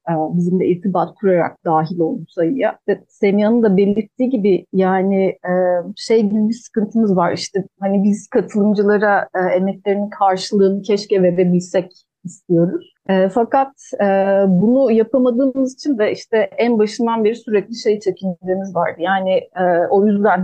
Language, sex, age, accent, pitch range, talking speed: Turkish, female, 30-49, native, 185-220 Hz, 125 wpm